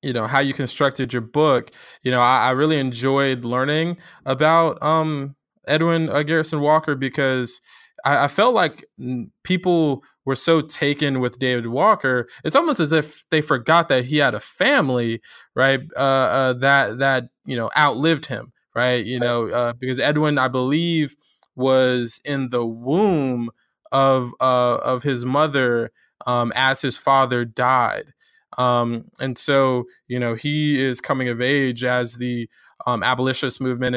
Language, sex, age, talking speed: English, male, 20-39, 155 wpm